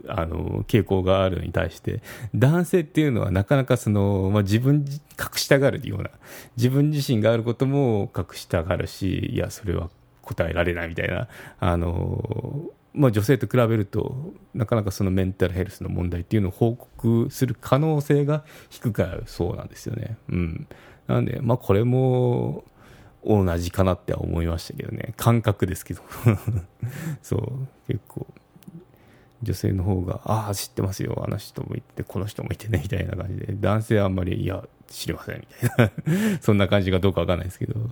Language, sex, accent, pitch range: Japanese, male, native, 95-125 Hz